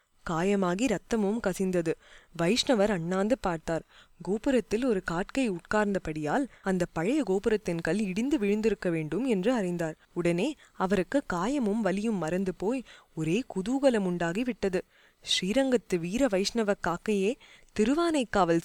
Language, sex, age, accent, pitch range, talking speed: Tamil, female, 20-39, native, 175-225 Hz, 110 wpm